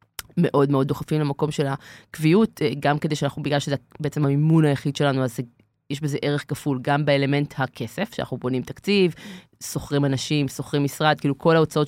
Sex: female